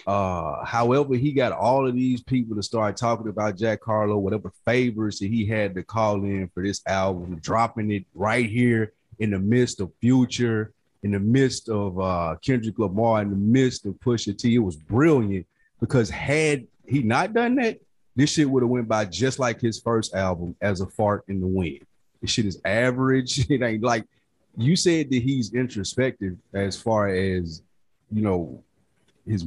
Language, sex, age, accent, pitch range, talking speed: English, male, 30-49, American, 95-125 Hz, 185 wpm